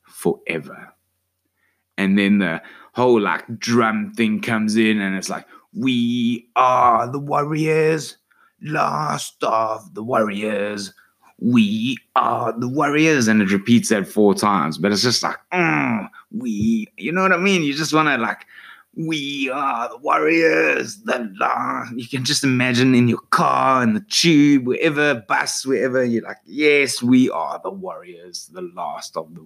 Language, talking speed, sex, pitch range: English, 155 wpm, male, 95-140 Hz